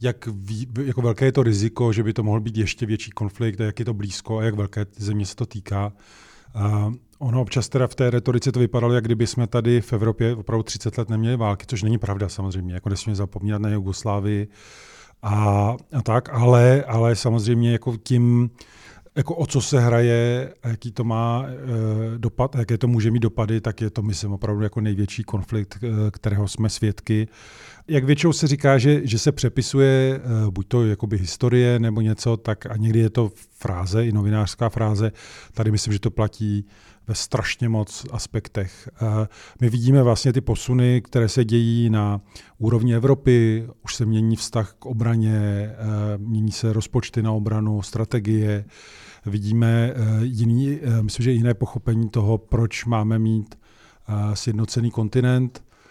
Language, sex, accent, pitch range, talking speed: Czech, male, native, 105-120 Hz, 170 wpm